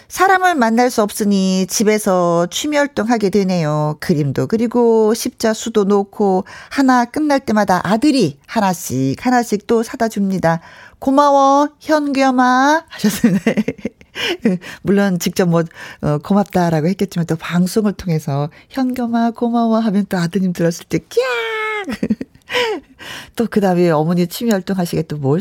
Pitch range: 175-260 Hz